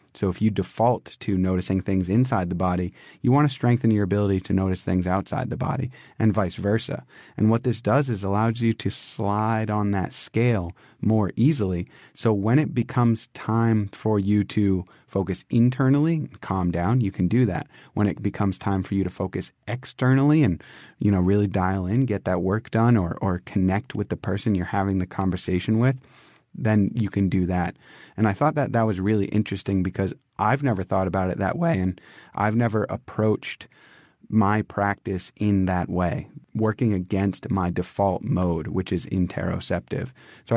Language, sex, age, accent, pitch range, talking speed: English, male, 30-49, American, 95-120 Hz, 185 wpm